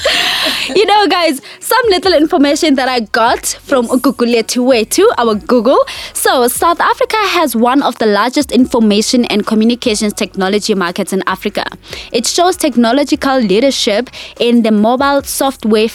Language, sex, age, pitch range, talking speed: English, female, 20-39, 210-275 Hz, 140 wpm